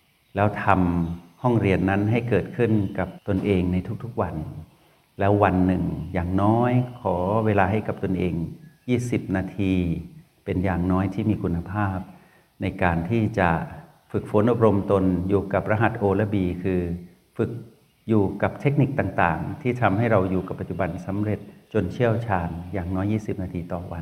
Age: 60-79